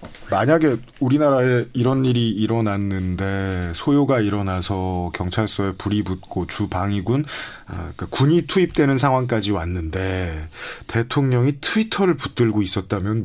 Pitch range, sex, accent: 100-145 Hz, male, native